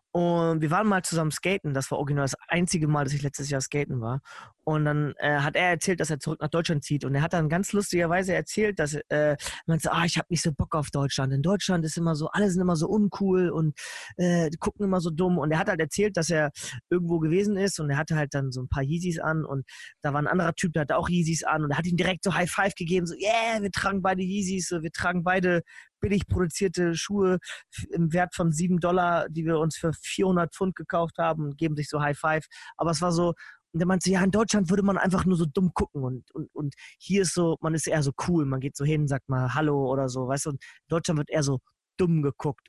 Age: 20-39